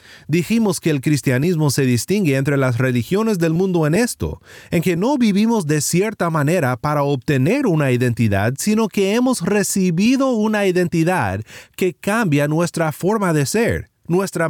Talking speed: 155 wpm